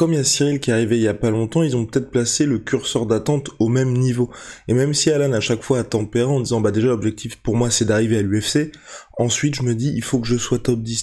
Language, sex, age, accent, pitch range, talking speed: French, male, 20-39, French, 115-135 Hz, 305 wpm